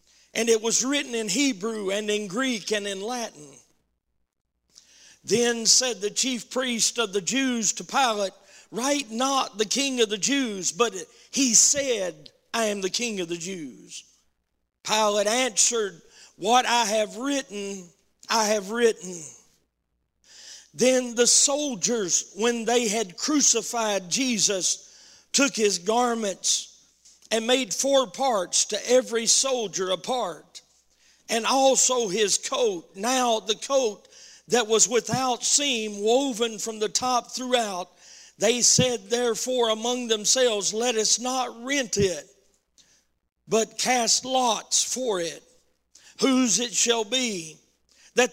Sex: male